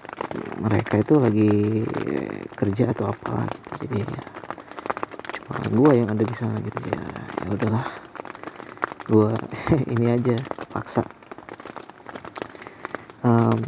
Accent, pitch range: native, 115-150 Hz